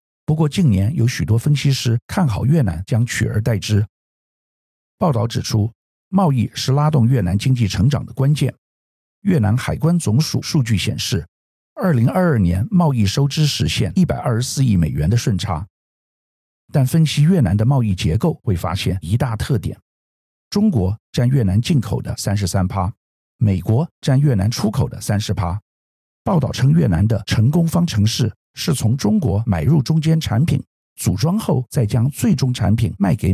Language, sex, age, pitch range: Chinese, male, 50-69, 100-145 Hz